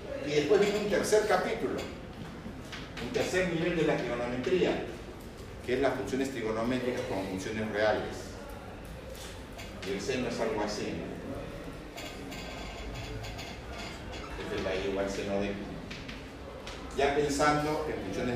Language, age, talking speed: Spanish, 50-69, 120 wpm